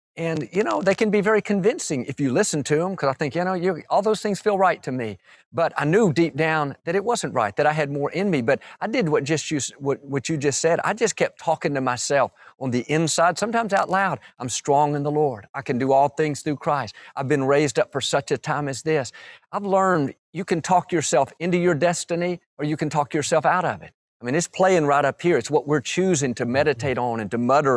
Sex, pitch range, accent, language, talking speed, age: male, 135-170 Hz, American, English, 255 wpm, 50-69